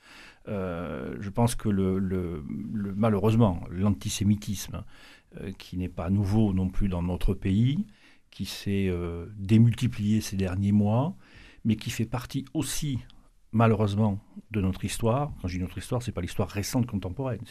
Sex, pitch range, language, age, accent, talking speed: male, 95-110 Hz, French, 50-69, French, 155 wpm